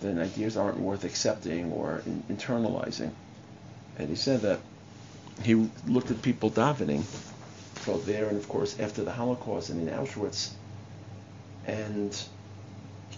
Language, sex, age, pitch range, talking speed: English, male, 50-69, 100-110 Hz, 130 wpm